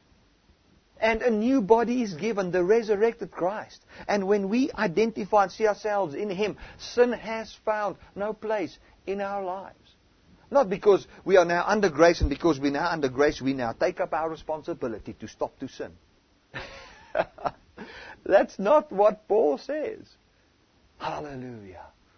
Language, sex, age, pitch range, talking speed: English, male, 50-69, 110-180 Hz, 150 wpm